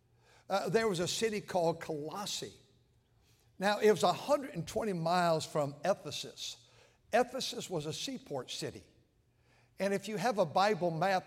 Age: 60-79